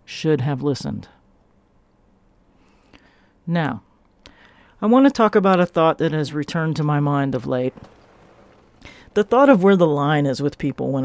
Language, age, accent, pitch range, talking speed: English, 40-59, American, 140-195 Hz, 160 wpm